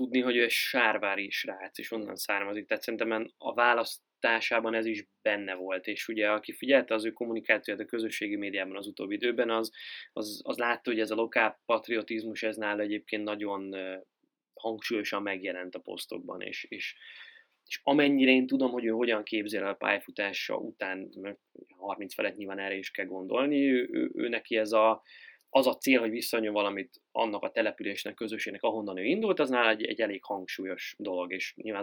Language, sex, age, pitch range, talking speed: Hungarian, male, 20-39, 100-115 Hz, 175 wpm